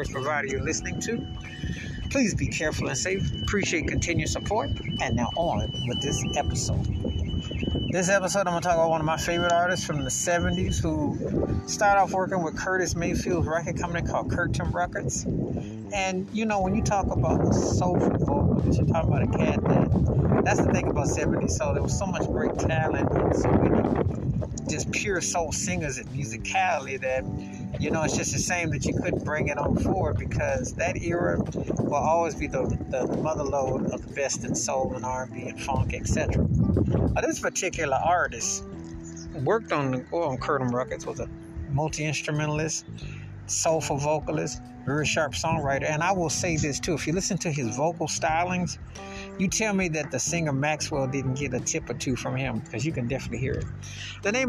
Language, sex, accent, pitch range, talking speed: English, male, American, 125-175 Hz, 185 wpm